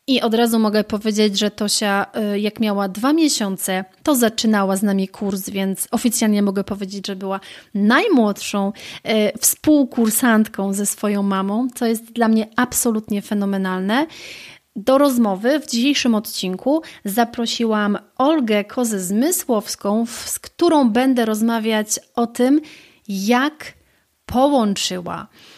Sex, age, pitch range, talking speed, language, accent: female, 30-49, 200-240 Hz, 115 wpm, Polish, native